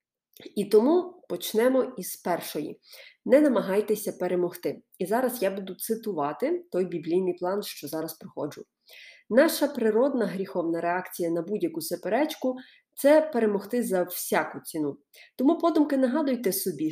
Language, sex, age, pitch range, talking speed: Ukrainian, female, 30-49, 180-255 Hz, 130 wpm